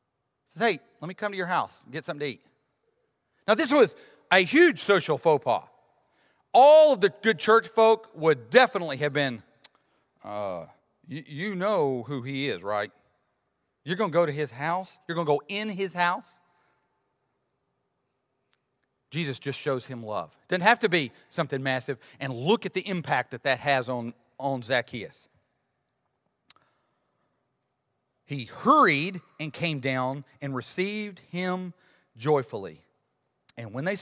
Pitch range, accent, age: 125-180 Hz, American, 40-59